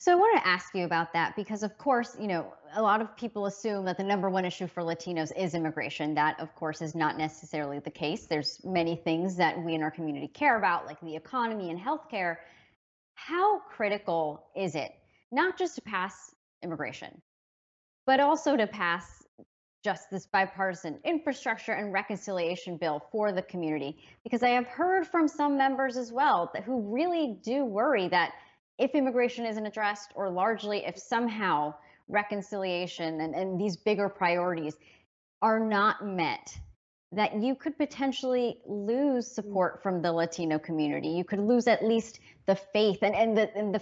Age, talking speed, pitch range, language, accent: 30-49, 170 wpm, 170-230 Hz, English, American